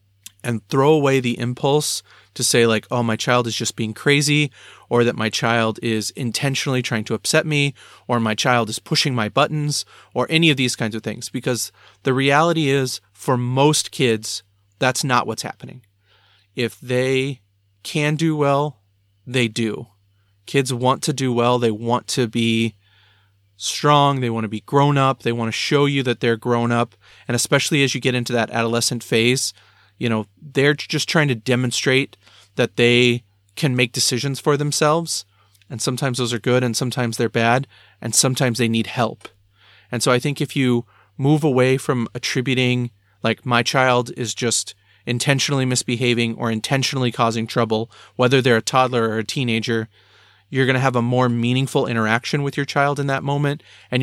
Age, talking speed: 30-49, 180 wpm